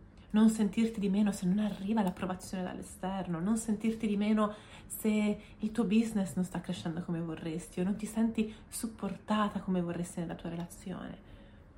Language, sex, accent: Italian, female, native